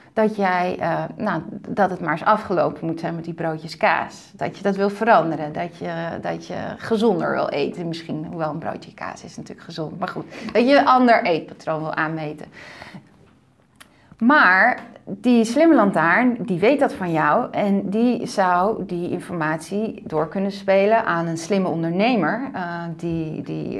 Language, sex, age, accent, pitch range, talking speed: Dutch, female, 30-49, Dutch, 165-210 Hz, 170 wpm